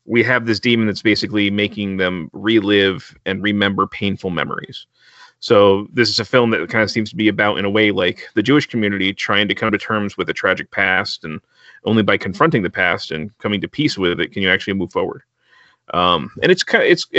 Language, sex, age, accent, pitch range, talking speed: English, male, 30-49, American, 105-125 Hz, 215 wpm